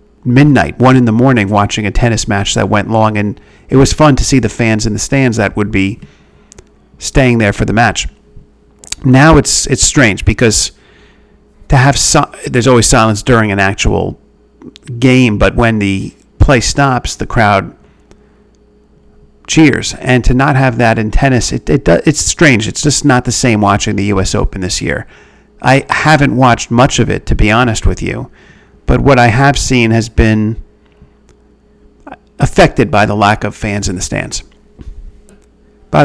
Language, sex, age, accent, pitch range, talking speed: English, male, 40-59, American, 105-125 Hz, 175 wpm